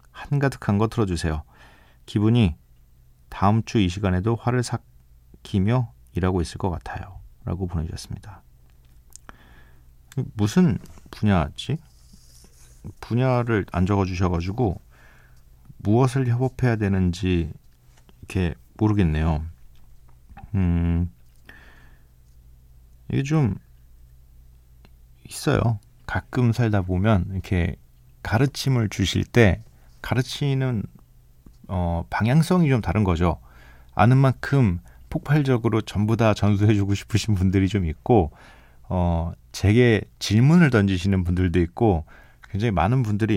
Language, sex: Korean, male